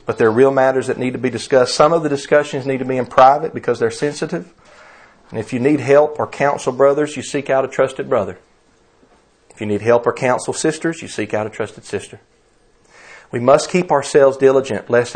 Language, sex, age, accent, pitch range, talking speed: English, male, 40-59, American, 115-140 Hz, 220 wpm